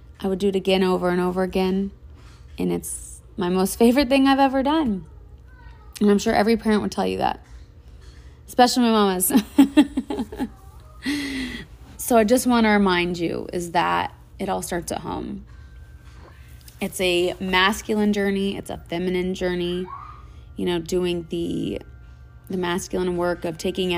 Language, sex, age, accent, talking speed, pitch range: English, female, 20-39, American, 155 wpm, 170-215 Hz